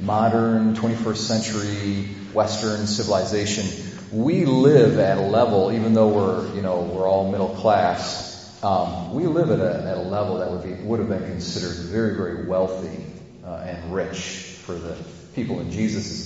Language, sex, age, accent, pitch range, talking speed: English, male, 40-59, American, 90-115 Hz, 165 wpm